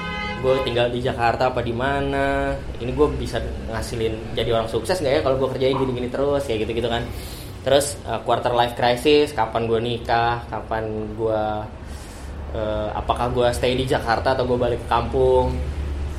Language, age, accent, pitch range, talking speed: Indonesian, 20-39, native, 105-130 Hz, 165 wpm